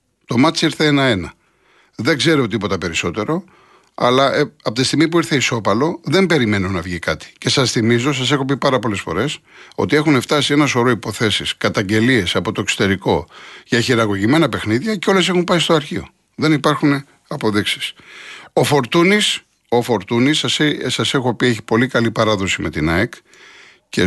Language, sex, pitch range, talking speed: Greek, male, 110-145 Hz, 165 wpm